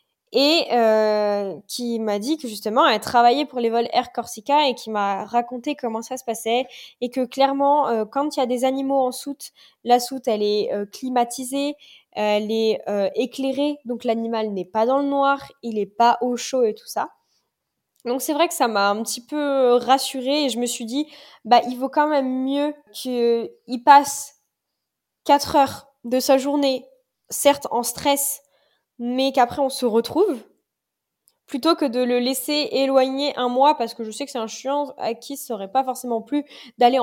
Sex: female